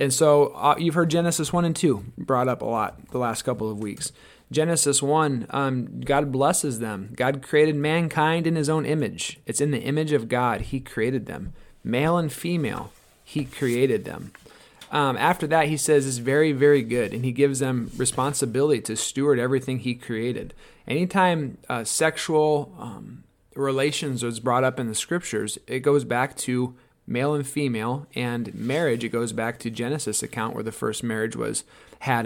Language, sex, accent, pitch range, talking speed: English, male, American, 120-150 Hz, 180 wpm